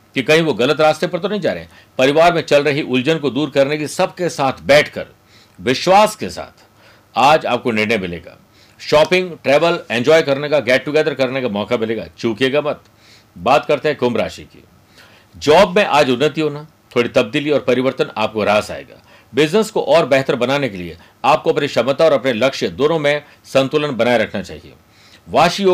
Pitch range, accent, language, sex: 120-155 Hz, native, Hindi, male